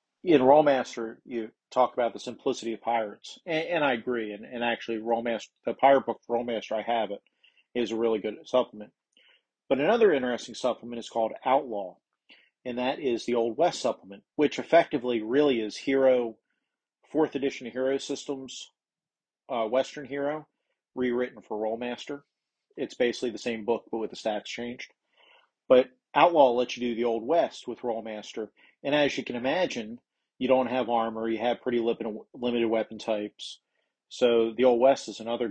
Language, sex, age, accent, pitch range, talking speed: English, male, 40-59, American, 115-130 Hz, 170 wpm